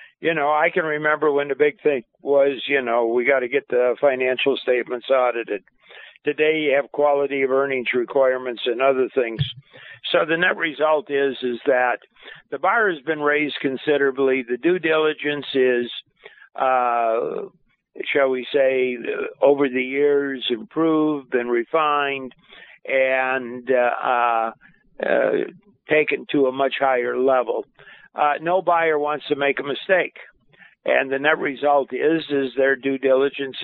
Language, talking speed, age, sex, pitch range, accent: English, 150 wpm, 50-69, male, 125-150 Hz, American